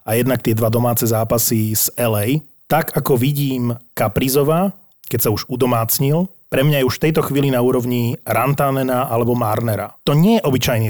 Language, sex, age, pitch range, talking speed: Slovak, male, 30-49, 120-150 Hz, 175 wpm